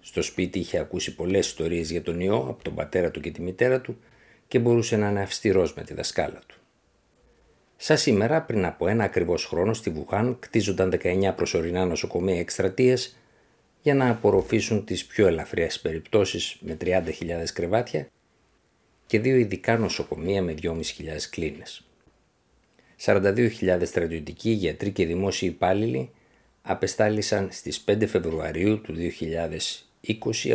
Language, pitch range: Greek, 90-115 Hz